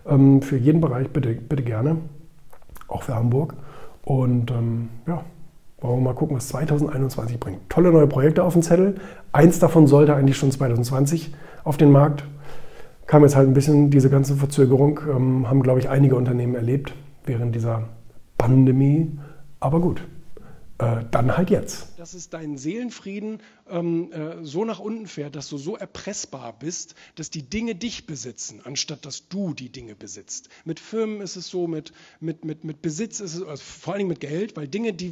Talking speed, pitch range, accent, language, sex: 170 wpm, 140-180 Hz, German, German, male